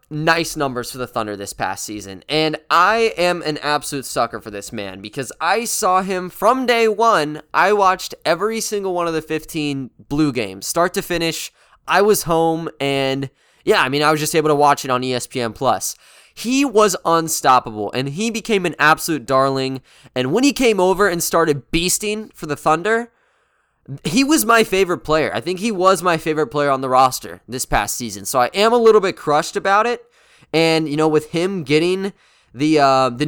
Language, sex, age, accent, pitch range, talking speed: English, male, 20-39, American, 140-190 Hz, 200 wpm